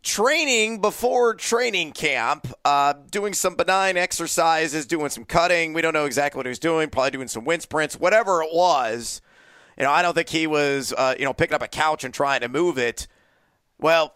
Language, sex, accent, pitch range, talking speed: English, male, American, 145-195 Hz, 205 wpm